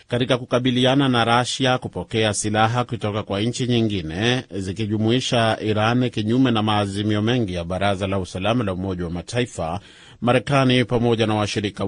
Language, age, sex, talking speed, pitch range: Swahili, 30-49, male, 140 wpm, 100-120 Hz